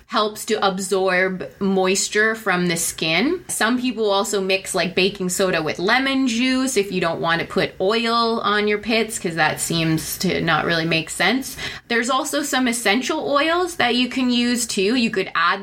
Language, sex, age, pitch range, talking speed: English, female, 20-39, 180-215 Hz, 185 wpm